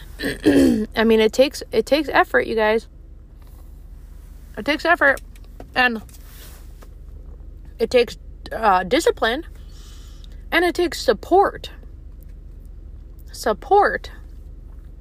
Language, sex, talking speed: English, female, 90 wpm